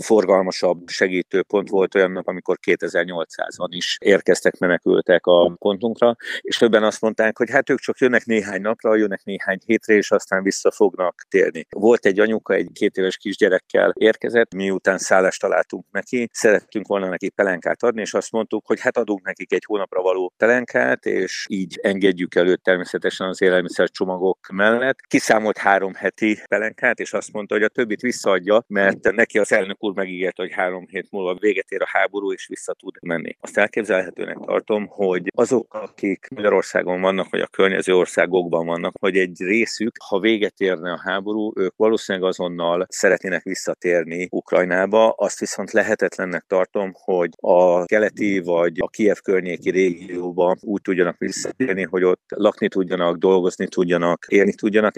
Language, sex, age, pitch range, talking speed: Hungarian, male, 50-69, 90-110 Hz, 155 wpm